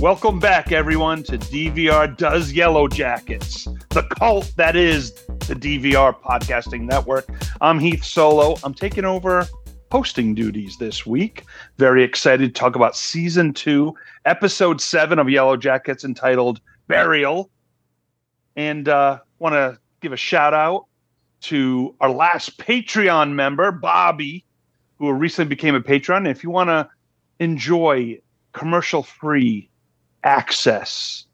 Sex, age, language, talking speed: male, 40-59, English, 125 wpm